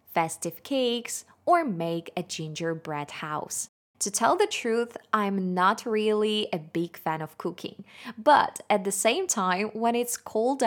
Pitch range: 180-225 Hz